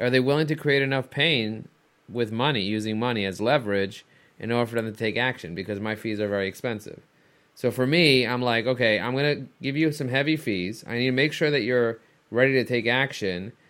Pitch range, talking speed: 110-135 Hz, 225 wpm